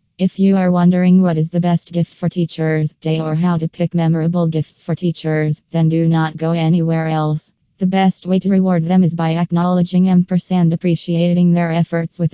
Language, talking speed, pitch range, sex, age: English, 200 wpm, 160-180 Hz, female, 20-39